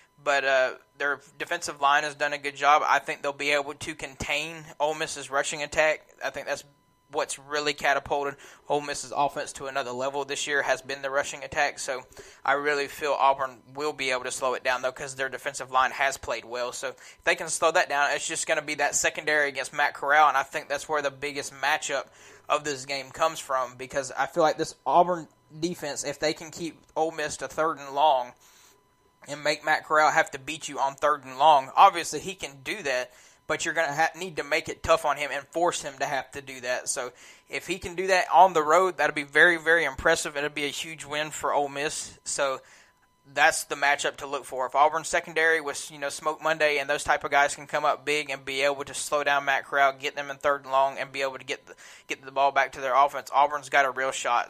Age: 20-39